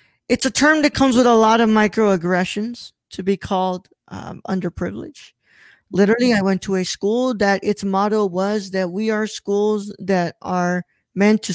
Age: 20-39